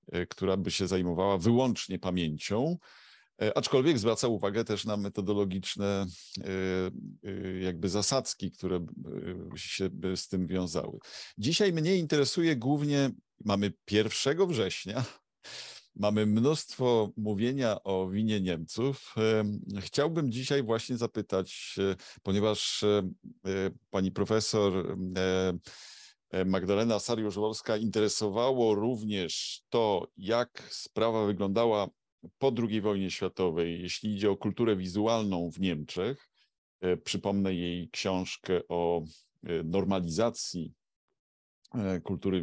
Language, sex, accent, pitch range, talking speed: Polish, male, native, 95-115 Hz, 90 wpm